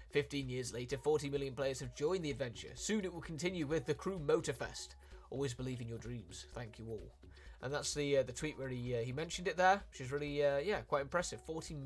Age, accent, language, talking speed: 20-39, British, Italian, 245 wpm